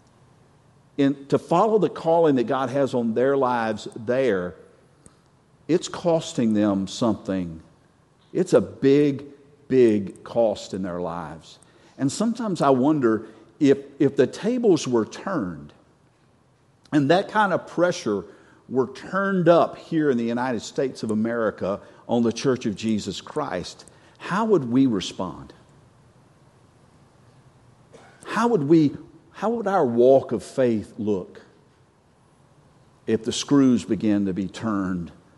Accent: American